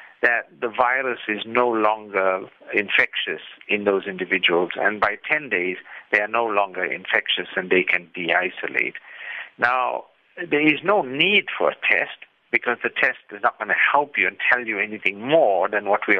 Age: 60-79